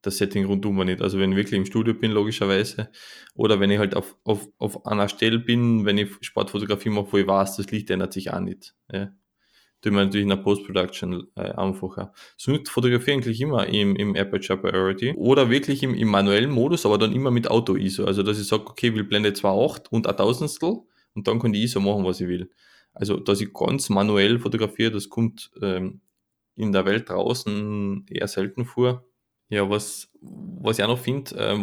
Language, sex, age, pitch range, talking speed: German, male, 20-39, 100-110 Hz, 210 wpm